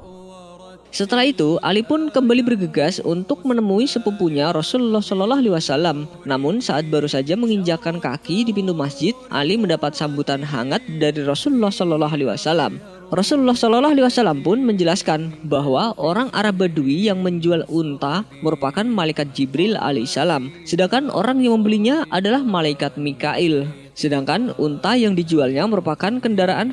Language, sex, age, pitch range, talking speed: Indonesian, female, 20-39, 150-215 Hz, 130 wpm